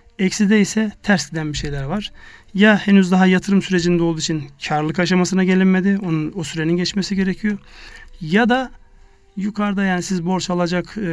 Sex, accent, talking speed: male, native, 150 wpm